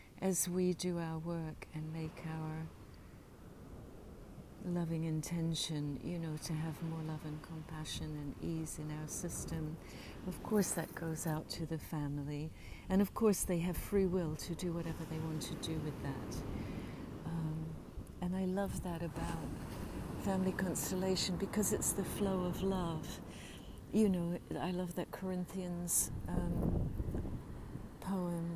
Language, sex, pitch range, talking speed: English, female, 160-180 Hz, 145 wpm